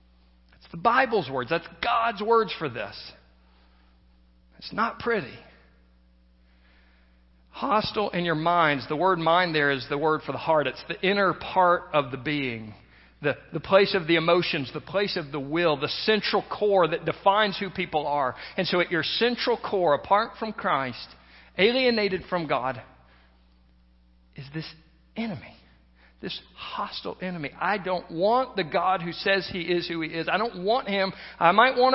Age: 50-69